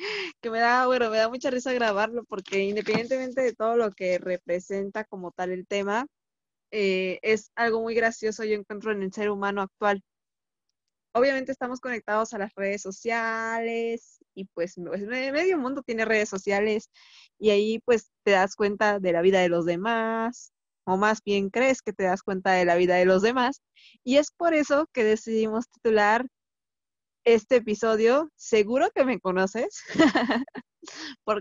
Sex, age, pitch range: female, 20-39, 205-255 Hz